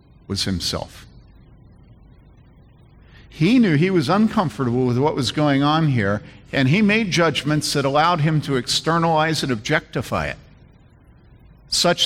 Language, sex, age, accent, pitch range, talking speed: English, male, 50-69, American, 105-150 Hz, 130 wpm